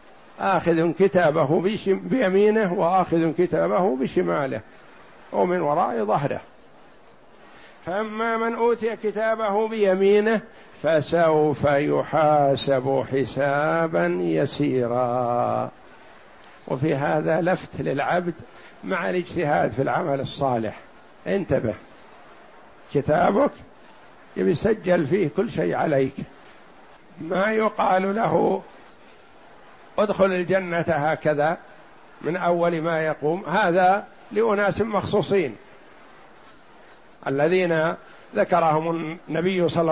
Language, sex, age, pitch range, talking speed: Arabic, male, 60-79, 155-200 Hz, 75 wpm